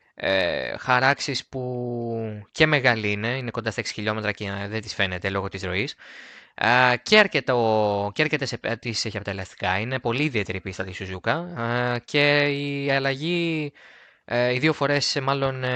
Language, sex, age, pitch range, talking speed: Greek, male, 20-39, 110-140 Hz, 135 wpm